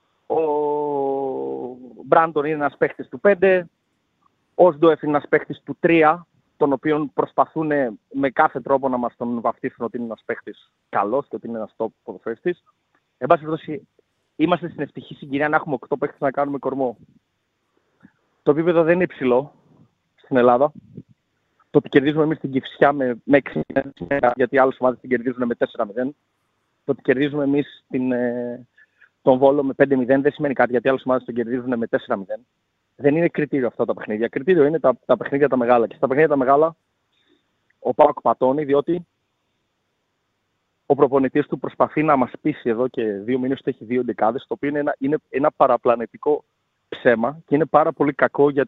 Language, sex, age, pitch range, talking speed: Greek, male, 30-49, 125-150 Hz, 175 wpm